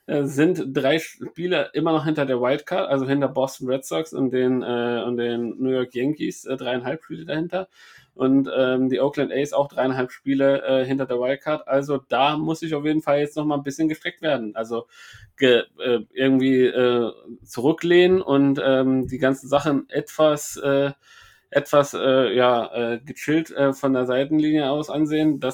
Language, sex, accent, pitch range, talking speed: German, male, German, 130-155 Hz, 165 wpm